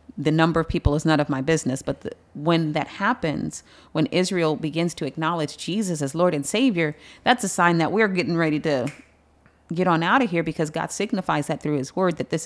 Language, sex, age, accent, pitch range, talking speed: English, female, 30-49, American, 155-185 Hz, 220 wpm